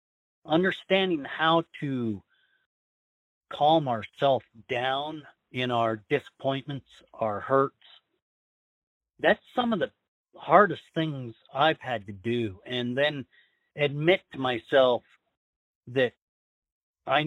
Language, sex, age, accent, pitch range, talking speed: English, male, 50-69, American, 110-145 Hz, 95 wpm